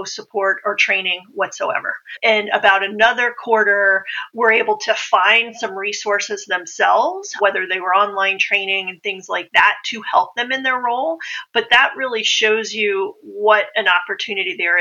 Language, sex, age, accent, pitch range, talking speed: English, female, 40-59, American, 200-240 Hz, 160 wpm